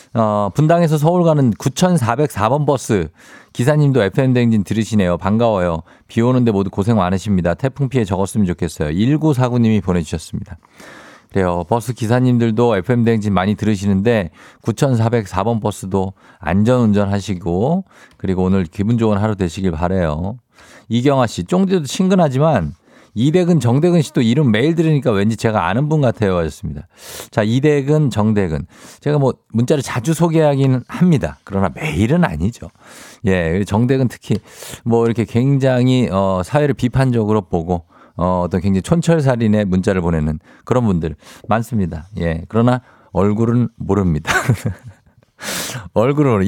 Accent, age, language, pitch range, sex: native, 50-69, Korean, 95-135 Hz, male